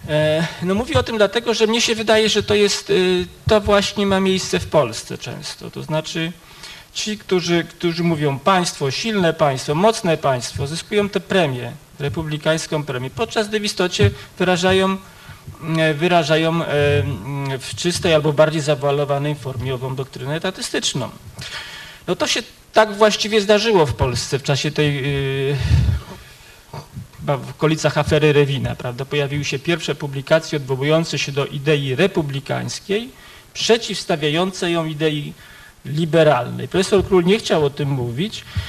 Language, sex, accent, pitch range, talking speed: Polish, male, native, 145-185 Hz, 135 wpm